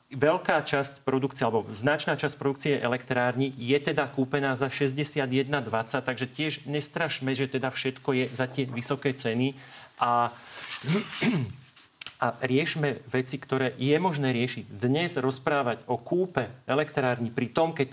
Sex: male